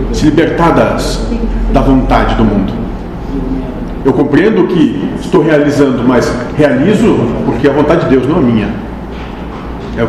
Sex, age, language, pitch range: male, 40-59, Portuguese, 110-145 Hz